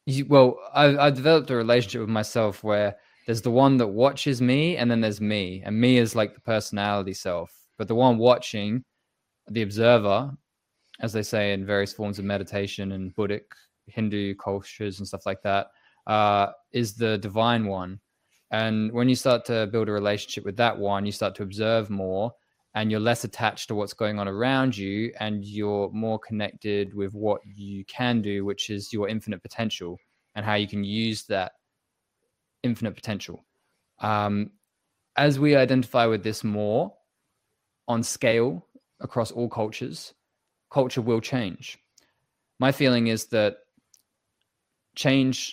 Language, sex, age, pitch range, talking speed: English, male, 20-39, 105-120 Hz, 160 wpm